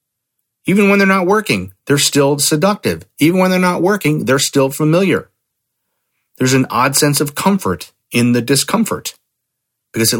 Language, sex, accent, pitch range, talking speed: English, male, American, 110-145 Hz, 160 wpm